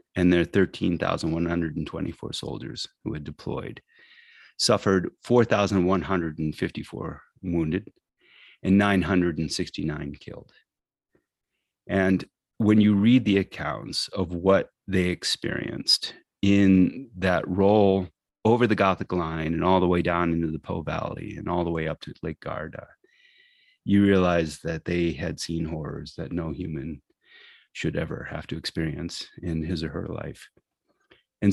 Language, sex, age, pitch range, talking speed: English, male, 30-49, 85-100 Hz, 130 wpm